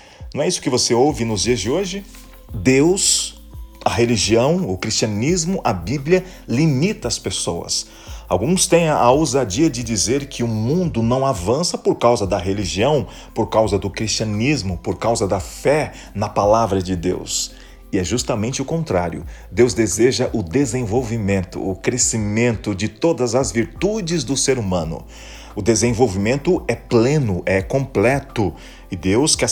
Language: Portuguese